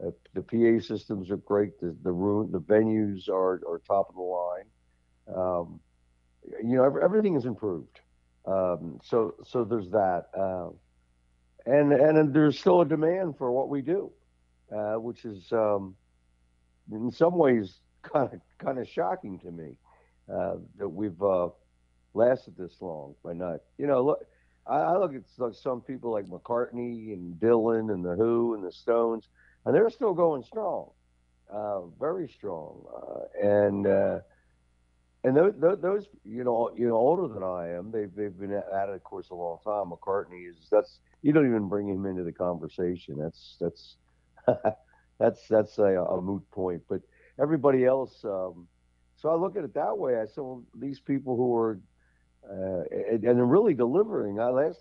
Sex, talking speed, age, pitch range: male, 175 wpm, 60-79, 80-115 Hz